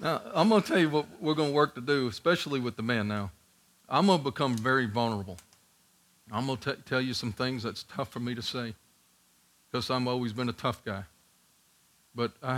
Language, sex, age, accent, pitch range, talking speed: English, male, 50-69, American, 115-135 Hz, 225 wpm